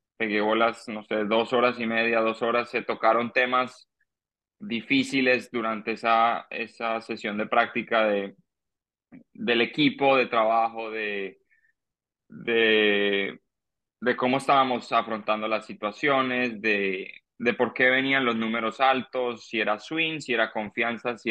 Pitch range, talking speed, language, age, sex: 110-130 Hz, 135 wpm, Spanish, 20-39, male